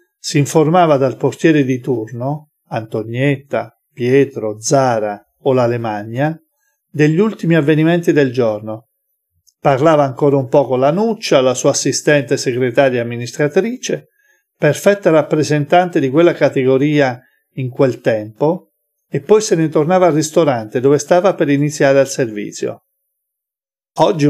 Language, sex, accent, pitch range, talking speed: Italian, male, native, 130-175 Hz, 125 wpm